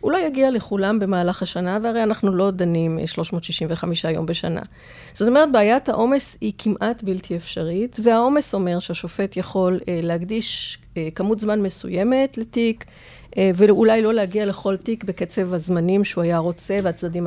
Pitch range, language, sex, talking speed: 180-235 Hz, Hebrew, female, 140 wpm